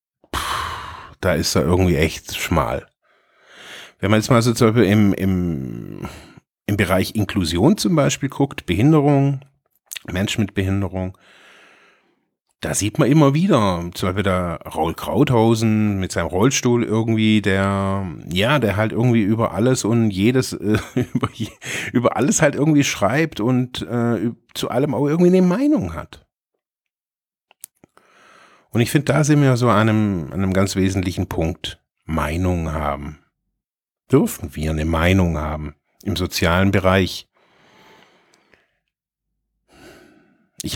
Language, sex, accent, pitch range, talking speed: German, male, German, 90-115 Hz, 125 wpm